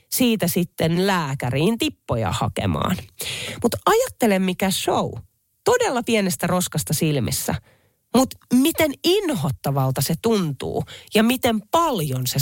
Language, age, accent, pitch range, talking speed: Finnish, 30-49, native, 140-215 Hz, 105 wpm